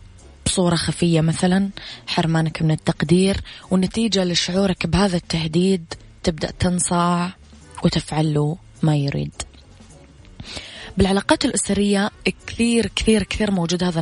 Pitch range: 150-180 Hz